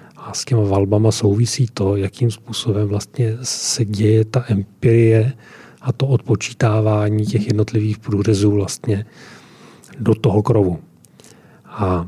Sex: male